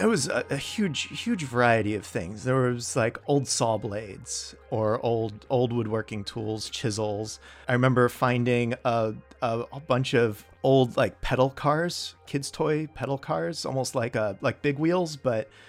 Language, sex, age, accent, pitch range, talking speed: English, male, 30-49, American, 110-135 Hz, 160 wpm